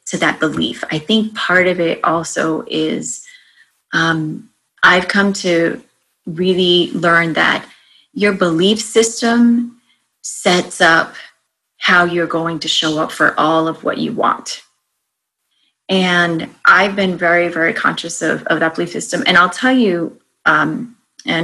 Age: 30-49